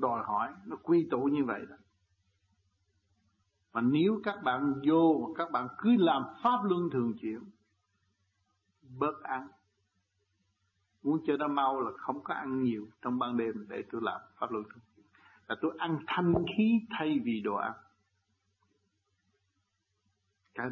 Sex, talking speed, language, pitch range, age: male, 150 wpm, Vietnamese, 100-150 Hz, 60-79